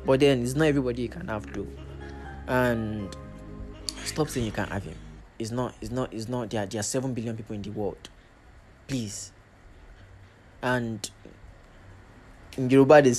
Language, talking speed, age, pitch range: English, 165 wpm, 20-39, 100-135 Hz